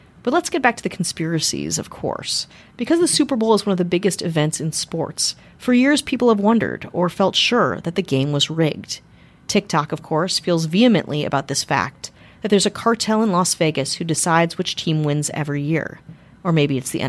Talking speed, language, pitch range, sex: 210 wpm, English, 160-215 Hz, female